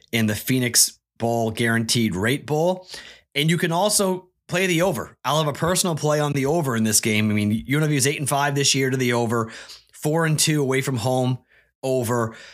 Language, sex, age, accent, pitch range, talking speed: English, male, 30-49, American, 110-150 Hz, 210 wpm